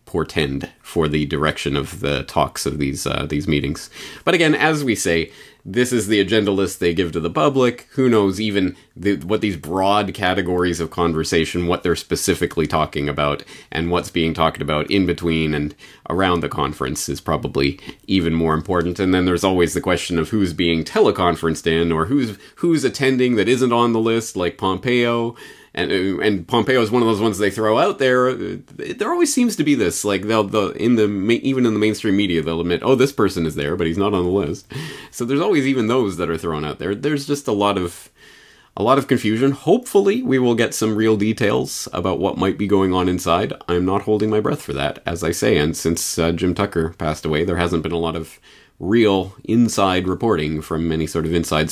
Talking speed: 215 wpm